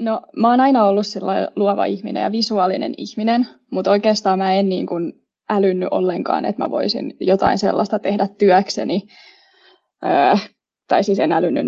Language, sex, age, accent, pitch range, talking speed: Finnish, female, 20-39, native, 195-245 Hz, 150 wpm